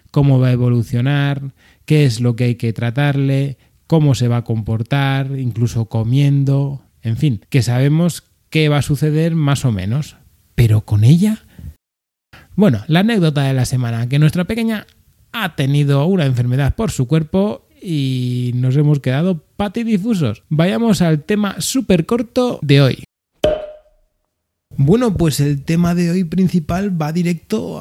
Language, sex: Spanish, male